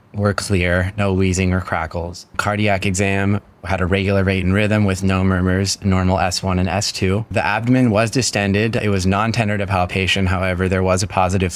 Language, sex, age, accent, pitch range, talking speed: English, male, 20-39, American, 95-105 Hz, 180 wpm